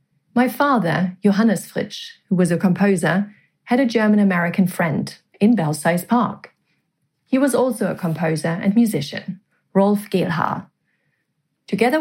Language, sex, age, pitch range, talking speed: English, female, 30-49, 175-220 Hz, 130 wpm